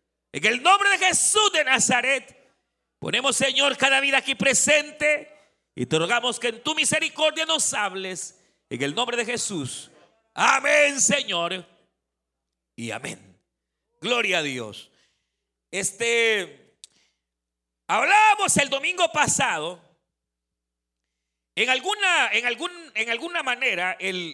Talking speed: 110 wpm